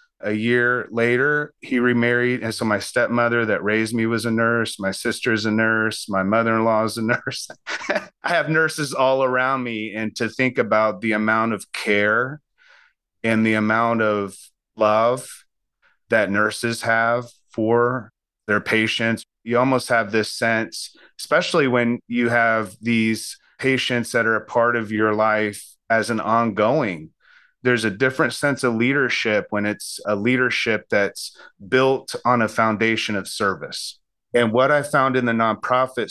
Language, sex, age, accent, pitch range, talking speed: English, male, 30-49, American, 110-125 Hz, 160 wpm